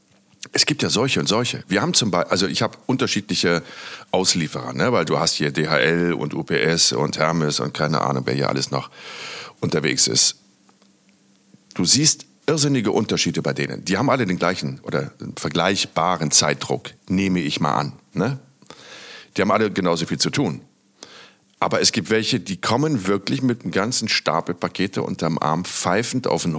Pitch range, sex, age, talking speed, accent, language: 75-105 Hz, male, 50-69, 180 wpm, German, German